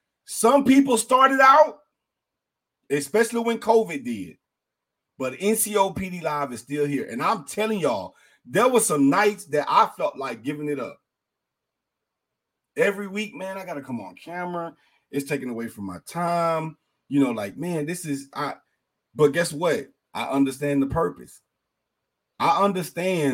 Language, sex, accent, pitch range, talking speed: English, male, American, 130-180 Hz, 155 wpm